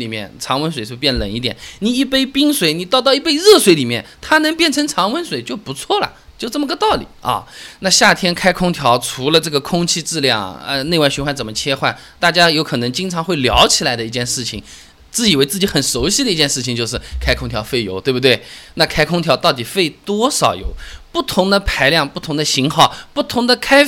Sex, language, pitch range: male, Chinese, 130-195 Hz